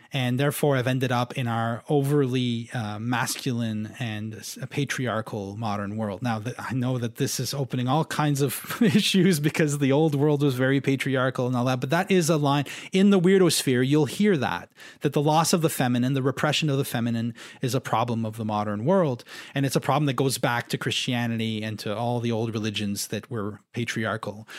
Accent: Canadian